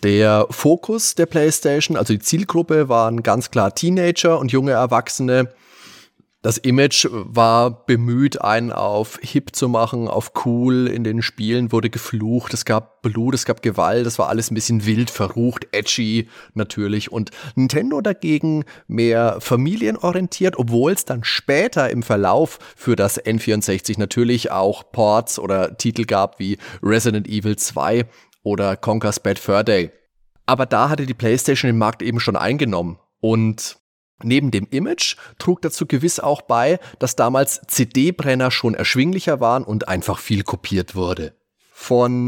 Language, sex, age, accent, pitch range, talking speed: German, male, 30-49, German, 110-135 Hz, 150 wpm